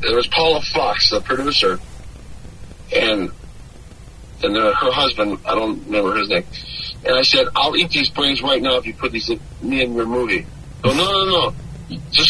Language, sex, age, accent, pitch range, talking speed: English, male, 50-69, American, 110-150 Hz, 190 wpm